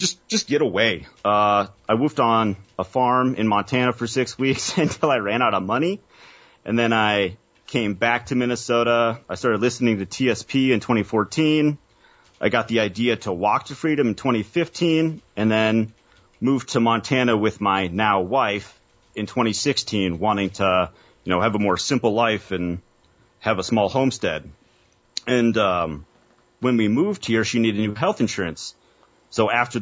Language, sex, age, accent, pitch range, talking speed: English, male, 30-49, American, 100-125 Hz, 165 wpm